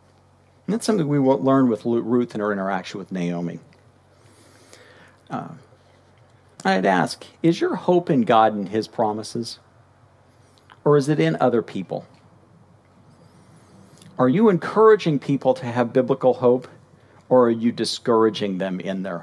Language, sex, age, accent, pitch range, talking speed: English, male, 50-69, American, 110-140 Hz, 140 wpm